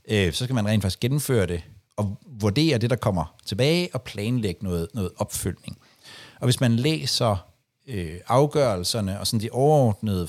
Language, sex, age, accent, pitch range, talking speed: Danish, male, 60-79, native, 100-130 Hz, 155 wpm